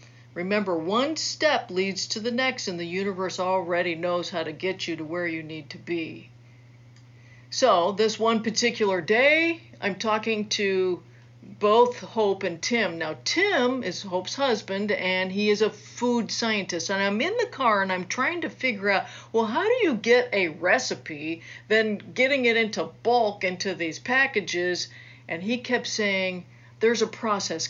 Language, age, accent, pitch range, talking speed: English, 50-69, American, 165-235 Hz, 170 wpm